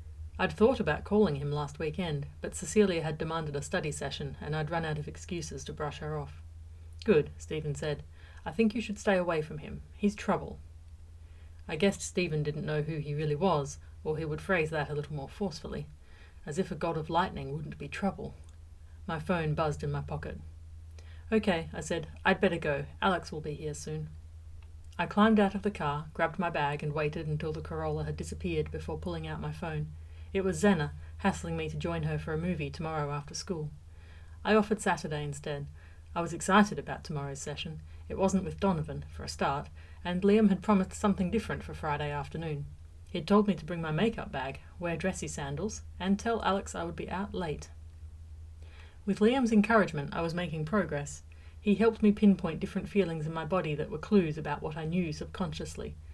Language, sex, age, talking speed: English, female, 40-59, 200 wpm